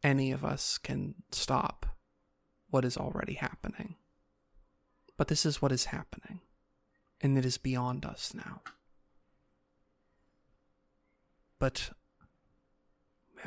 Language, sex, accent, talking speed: English, male, American, 100 wpm